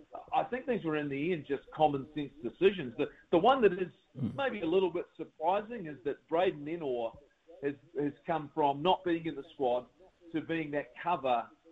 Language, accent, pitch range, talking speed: English, Australian, 140-170 Hz, 190 wpm